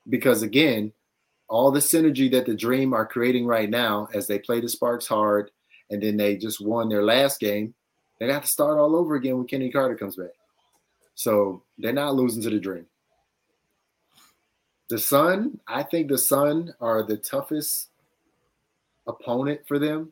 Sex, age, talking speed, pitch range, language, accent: male, 30-49, 170 wpm, 110-130 Hz, English, American